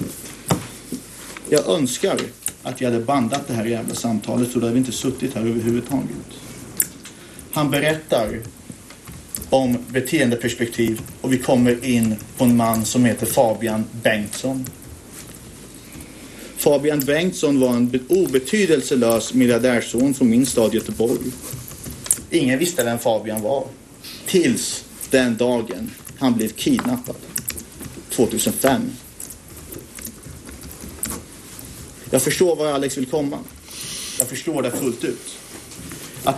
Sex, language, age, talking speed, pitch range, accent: male, Swedish, 30-49, 110 wpm, 115-150 Hz, native